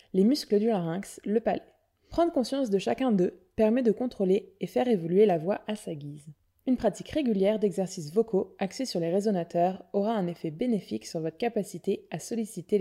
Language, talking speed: French, 185 wpm